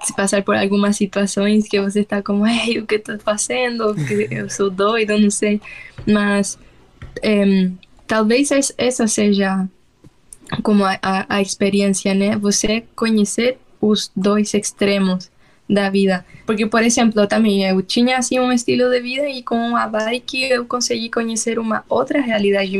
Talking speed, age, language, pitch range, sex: 155 wpm, 10-29, Portuguese, 205-235 Hz, female